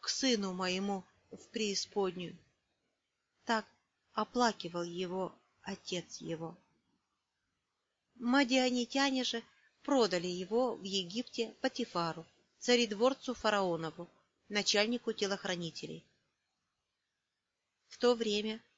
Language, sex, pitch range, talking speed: Russian, female, 190-265 Hz, 75 wpm